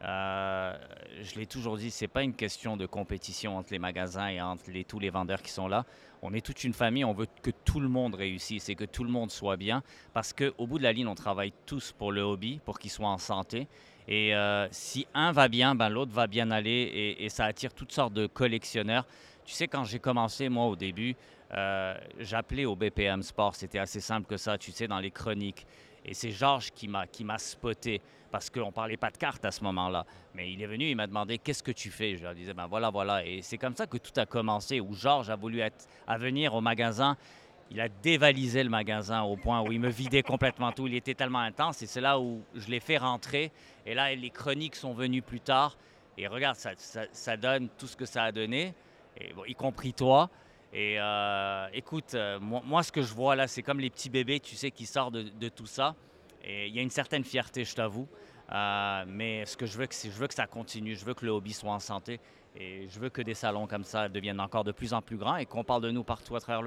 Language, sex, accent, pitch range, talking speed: French, male, French, 105-130 Hz, 255 wpm